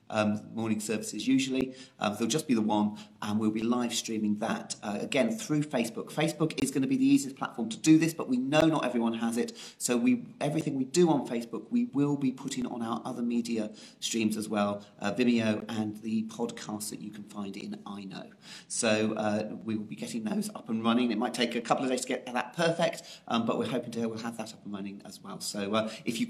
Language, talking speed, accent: English, 240 wpm, British